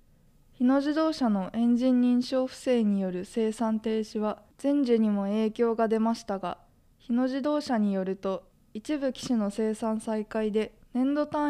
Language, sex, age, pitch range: Japanese, female, 20-39, 210-255 Hz